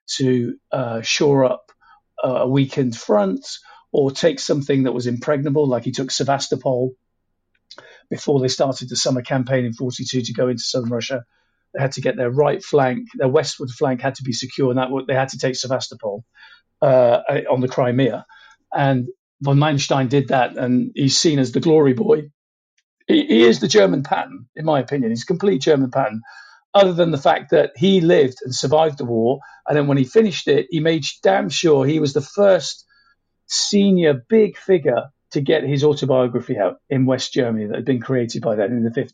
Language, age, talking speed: English, 50-69, 195 wpm